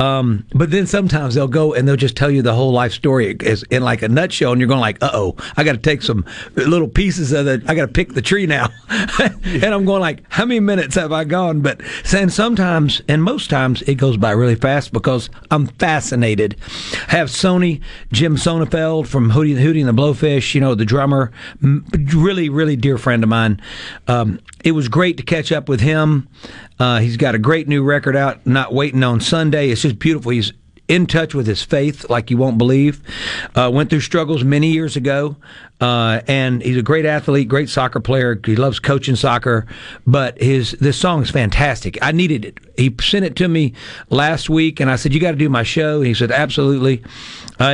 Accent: American